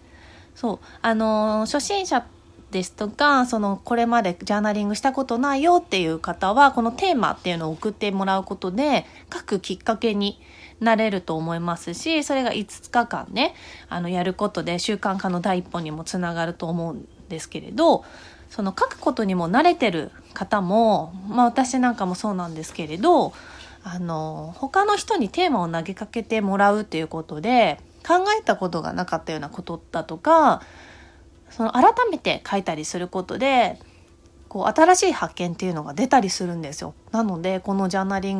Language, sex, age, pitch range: Japanese, female, 20-39, 170-245 Hz